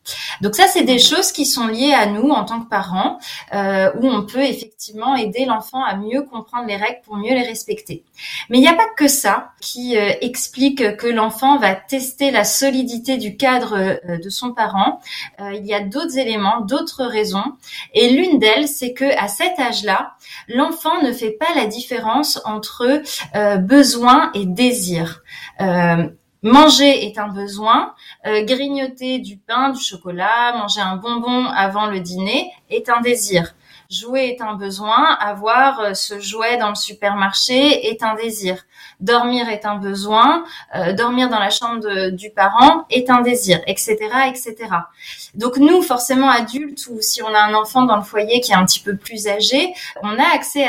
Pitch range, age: 210-270 Hz, 20-39